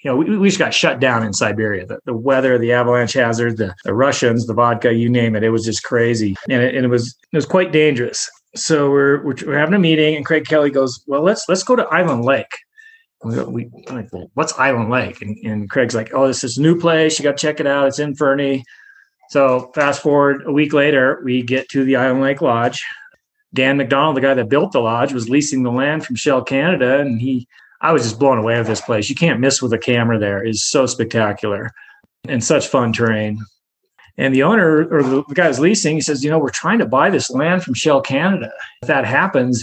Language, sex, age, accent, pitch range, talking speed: English, male, 30-49, American, 120-155 Hz, 235 wpm